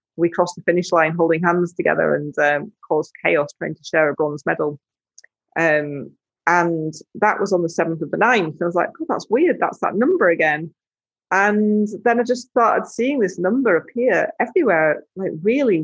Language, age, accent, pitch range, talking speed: English, 30-49, British, 155-205 Hz, 190 wpm